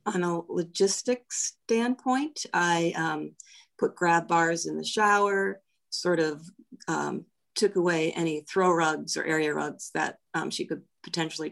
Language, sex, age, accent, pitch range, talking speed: English, female, 40-59, American, 155-190 Hz, 145 wpm